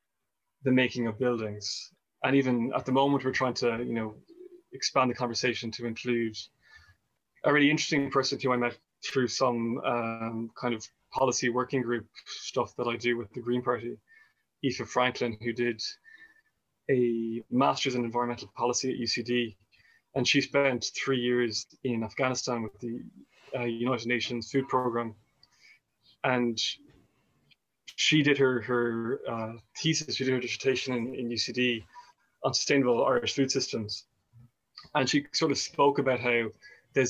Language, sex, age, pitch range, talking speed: English, male, 20-39, 120-135 Hz, 155 wpm